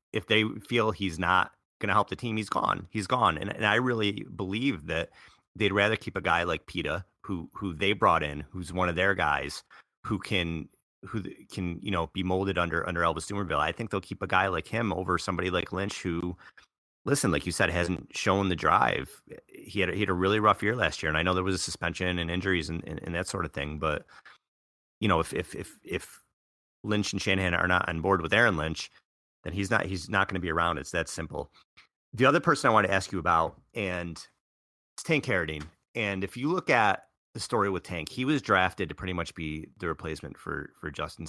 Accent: American